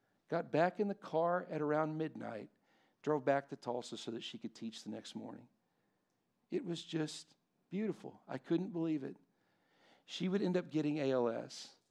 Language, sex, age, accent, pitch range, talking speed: English, male, 50-69, American, 120-165 Hz, 170 wpm